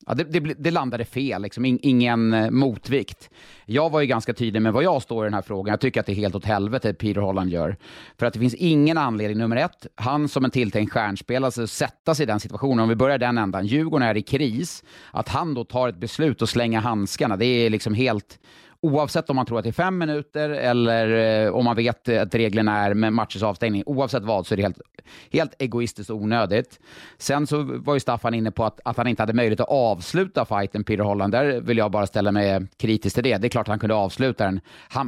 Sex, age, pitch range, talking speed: male, 30-49, 105-135 Hz, 245 wpm